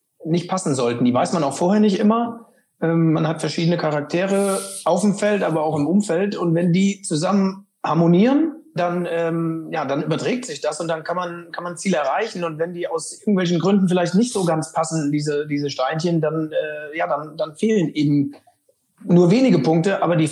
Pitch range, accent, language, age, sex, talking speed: 155-195 Hz, German, German, 40-59, male, 200 wpm